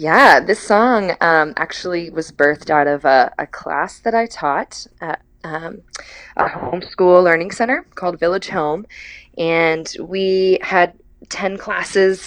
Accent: American